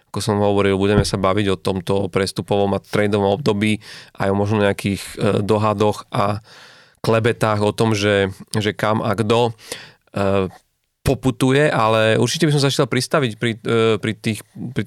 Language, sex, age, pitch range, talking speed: Slovak, male, 30-49, 100-115 Hz, 155 wpm